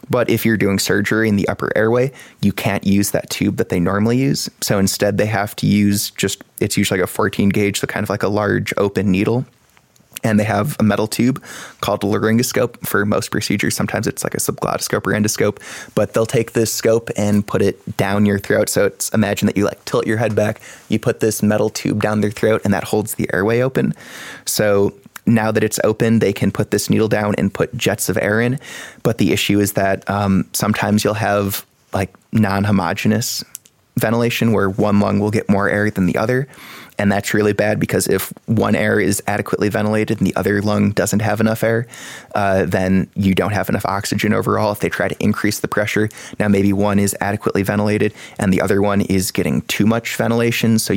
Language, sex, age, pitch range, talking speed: English, male, 20-39, 100-110 Hz, 215 wpm